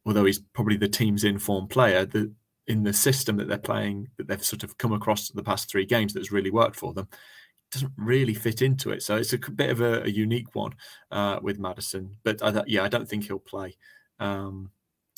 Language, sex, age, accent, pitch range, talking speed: English, male, 20-39, British, 95-105 Hz, 220 wpm